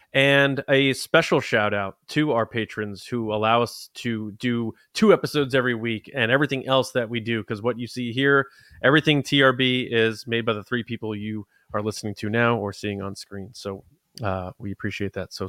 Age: 20-39